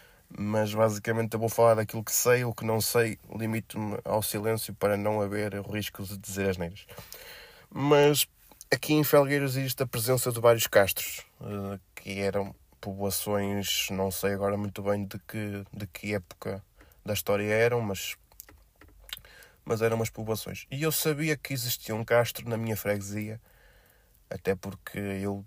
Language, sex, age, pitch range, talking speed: Portuguese, male, 20-39, 100-115 Hz, 160 wpm